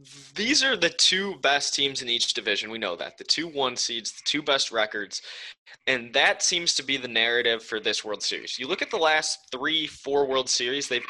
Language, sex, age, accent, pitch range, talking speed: English, male, 20-39, American, 115-140 Hz, 220 wpm